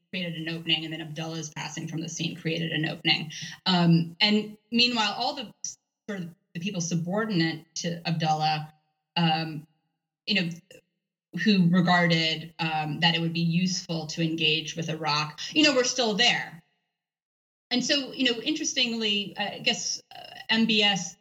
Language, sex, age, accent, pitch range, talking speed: English, female, 20-39, American, 160-195 Hz, 155 wpm